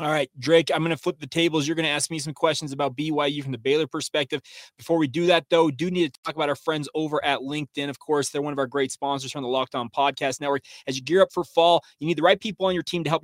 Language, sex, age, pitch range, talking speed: English, male, 20-39, 140-175 Hz, 310 wpm